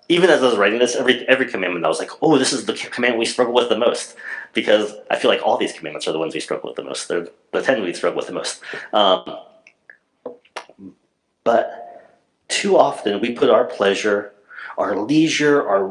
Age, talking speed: 30-49, 210 wpm